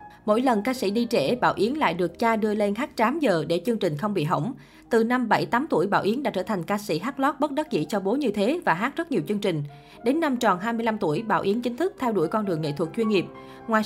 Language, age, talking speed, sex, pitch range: Vietnamese, 20-39, 300 wpm, female, 180-245 Hz